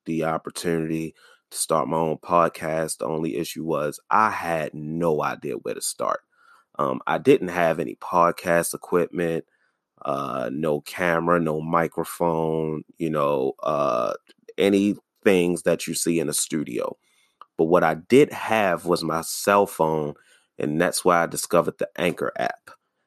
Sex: male